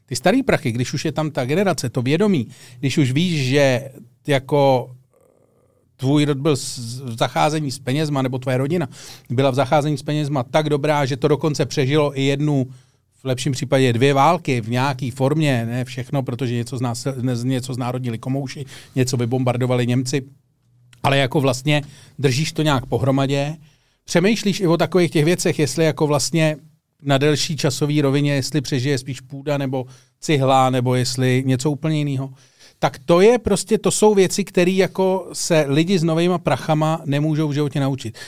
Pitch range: 130-155 Hz